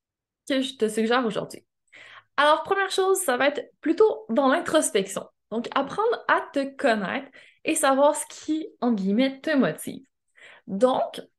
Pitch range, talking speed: 225-295 Hz, 150 wpm